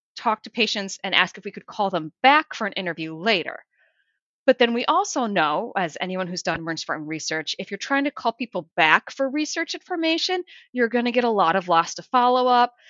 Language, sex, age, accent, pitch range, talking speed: English, female, 30-49, American, 175-225 Hz, 215 wpm